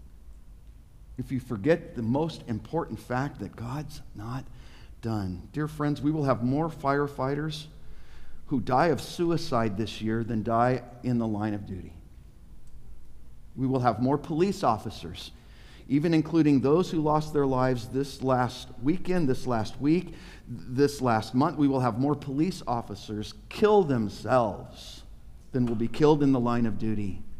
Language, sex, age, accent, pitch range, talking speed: English, male, 50-69, American, 110-155 Hz, 155 wpm